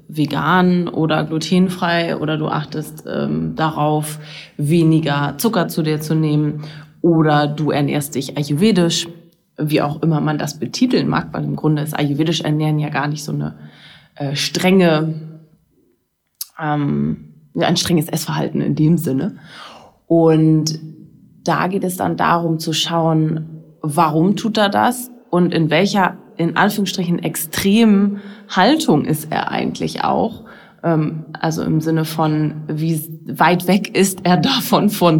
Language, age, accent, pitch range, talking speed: English, 20-39, German, 155-180 Hz, 135 wpm